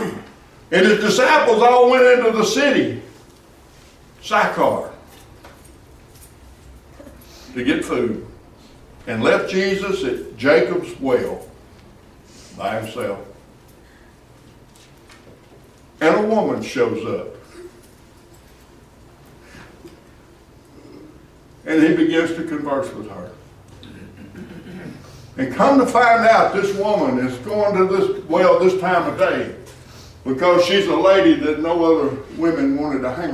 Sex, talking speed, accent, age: male, 105 wpm, American, 60-79